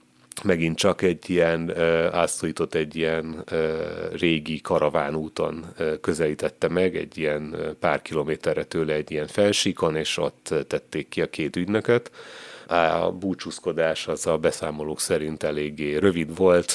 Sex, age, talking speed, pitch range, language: male, 30-49, 135 wpm, 80-100 Hz, Hungarian